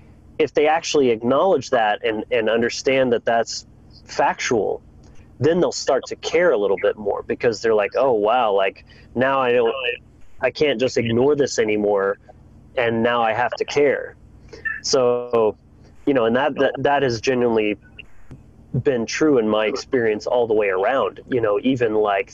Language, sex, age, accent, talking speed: English, male, 30-49, American, 170 wpm